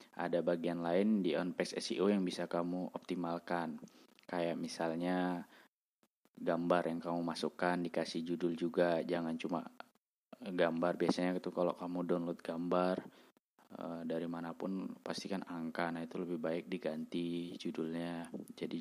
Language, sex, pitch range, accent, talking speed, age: Indonesian, male, 85-95 Hz, native, 130 wpm, 20-39